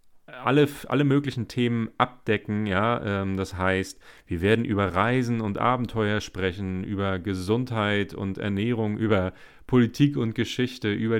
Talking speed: 135 wpm